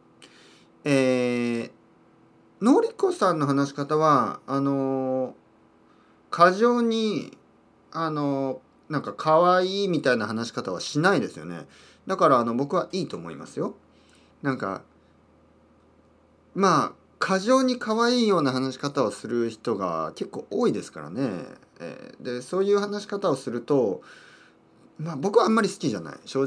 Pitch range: 105-165 Hz